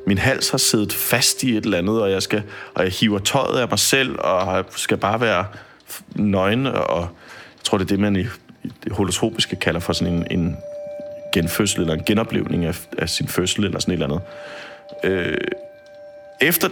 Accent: native